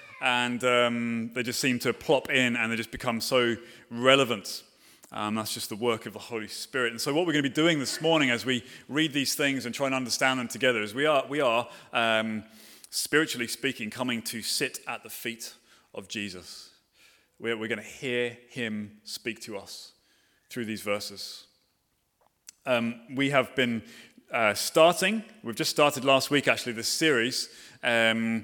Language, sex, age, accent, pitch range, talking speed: English, male, 30-49, British, 110-135 Hz, 185 wpm